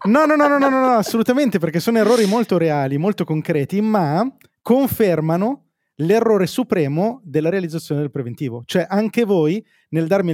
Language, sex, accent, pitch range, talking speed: Italian, male, native, 150-215 Hz, 165 wpm